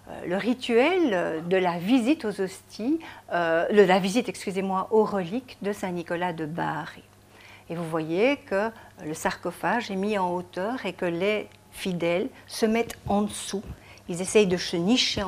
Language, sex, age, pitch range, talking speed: French, female, 60-79, 170-215 Hz, 155 wpm